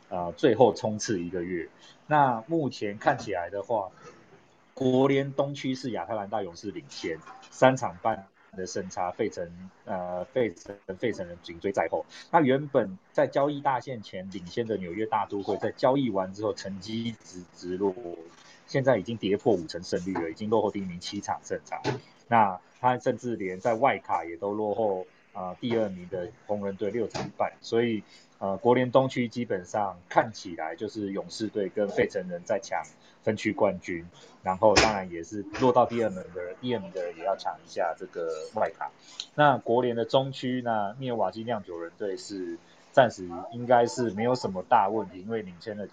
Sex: male